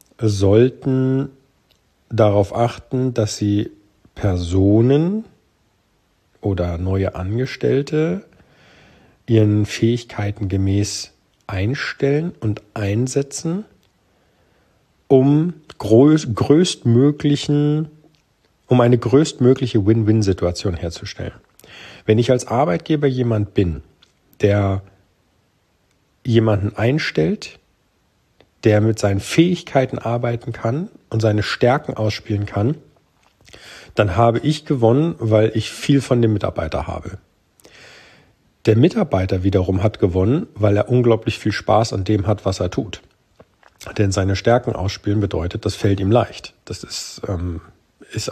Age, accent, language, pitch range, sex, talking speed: 40-59, German, German, 100-130 Hz, male, 100 wpm